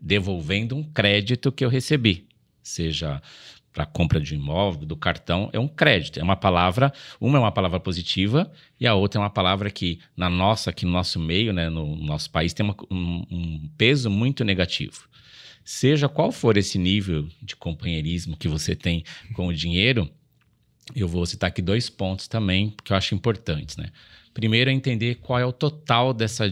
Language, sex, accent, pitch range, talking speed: Portuguese, male, Brazilian, 90-115 Hz, 185 wpm